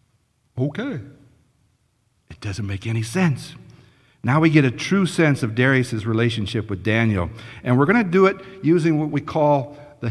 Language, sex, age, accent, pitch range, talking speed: English, male, 50-69, American, 115-155 Hz, 165 wpm